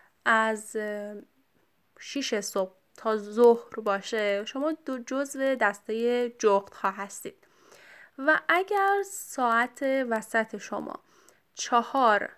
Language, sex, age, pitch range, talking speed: Persian, female, 10-29, 220-305 Hz, 85 wpm